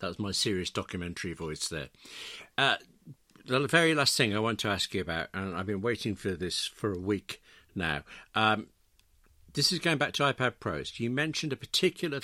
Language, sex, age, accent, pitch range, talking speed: English, male, 60-79, British, 100-130 Hz, 195 wpm